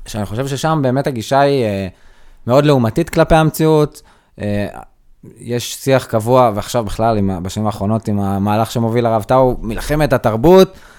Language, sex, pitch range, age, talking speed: Hebrew, male, 105-135 Hz, 20-39, 140 wpm